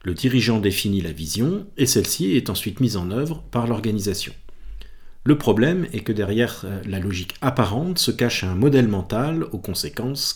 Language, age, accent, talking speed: French, 50-69, French, 170 wpm